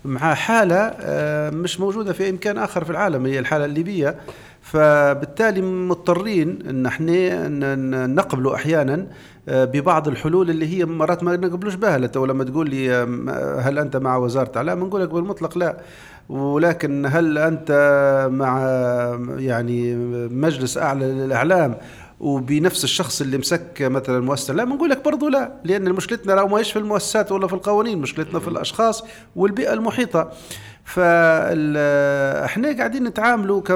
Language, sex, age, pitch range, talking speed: Arabic, male, 40-59, 135-185 Hz, 130 wpm